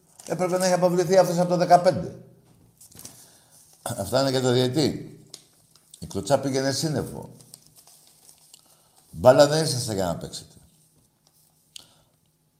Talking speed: 110 wpm